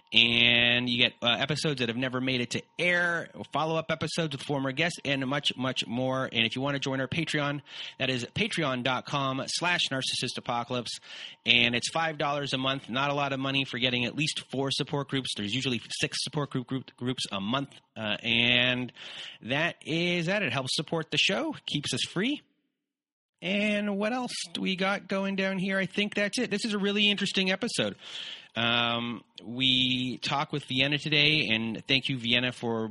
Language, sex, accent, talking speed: English, male, American, 185 wpm